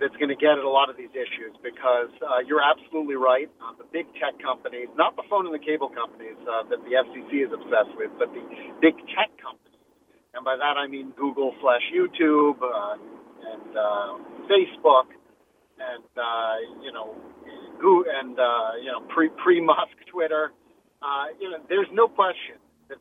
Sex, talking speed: male, 185 wpm